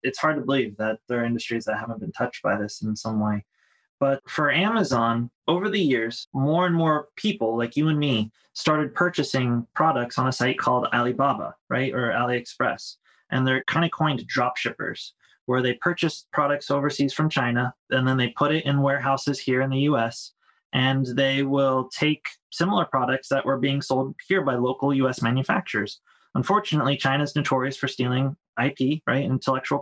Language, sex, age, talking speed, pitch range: English, male, 20-39, 180 wpm, 125-145 Hz